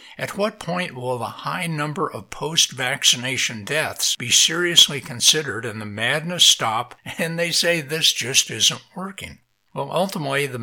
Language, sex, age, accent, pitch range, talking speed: English, male, 60-79, American, 115-155 Hz, 150 wpm